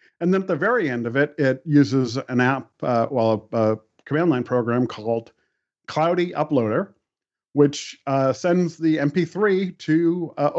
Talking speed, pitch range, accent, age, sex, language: 165 wpm, 120-155 Hz, American, 40-59, male, English